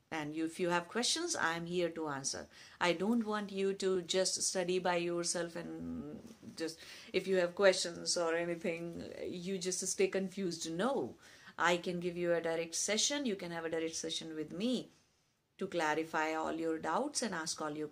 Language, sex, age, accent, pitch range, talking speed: English, female, 50-69, Indian, 160-195 Hz, 185 wpm